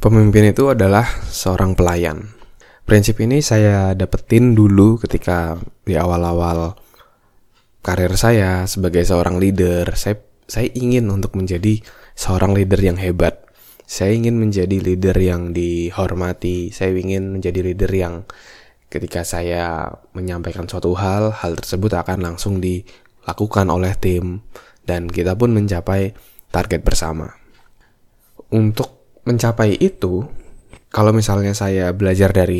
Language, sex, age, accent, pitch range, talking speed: Indonesian, male, 20-39, native, 90-105 Hz, 120 wpm